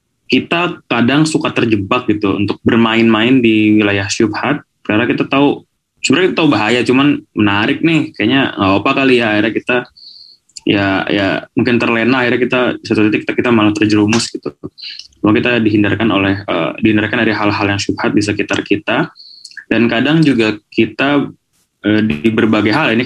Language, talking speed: Indonesian, 160 wpm